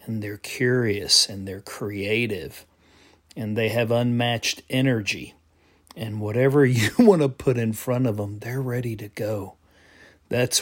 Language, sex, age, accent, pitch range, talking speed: English, male, 40-59, American, 95-120 Hz, 145 wpm